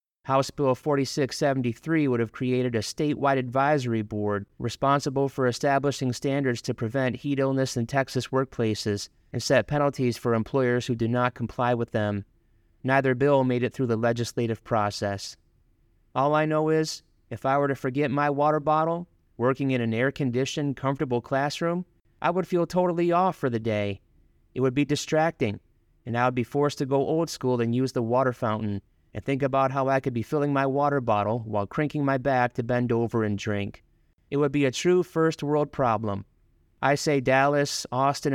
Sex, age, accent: male, 30-49, American